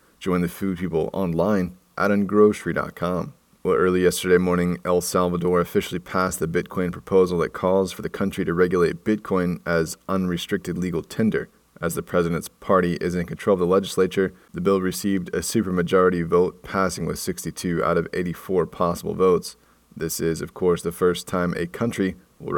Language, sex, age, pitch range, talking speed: English, male, 20-39, 85-95 Hz, 170 wpm